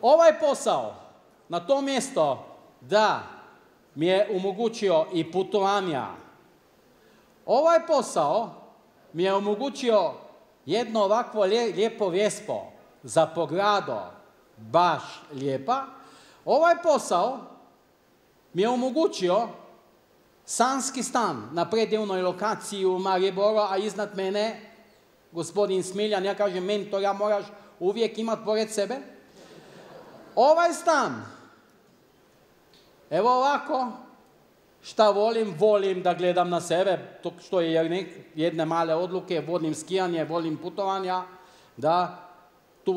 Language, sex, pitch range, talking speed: Croatian, male, 170-215 Hz, 105 wpm